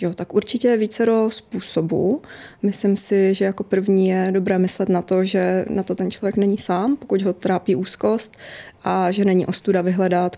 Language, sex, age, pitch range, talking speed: Czech, female, 20-39, 185-210 Hz, 185 wpm